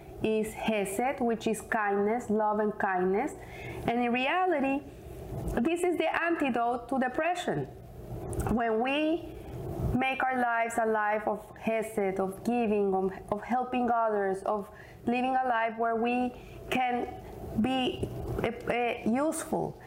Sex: female